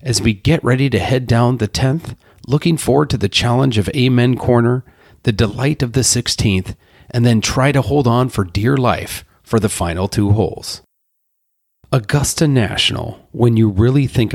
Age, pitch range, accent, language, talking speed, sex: 40-59, 100-130 Hz, American, English, 175 wpm, male